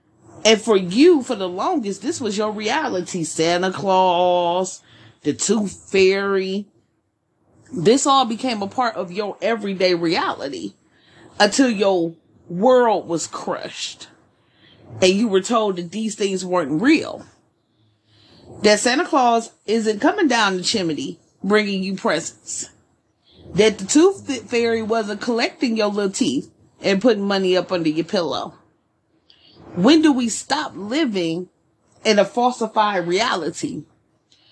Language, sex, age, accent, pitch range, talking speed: English, female, 30-49, American, 185-245 Hz, 130 wpm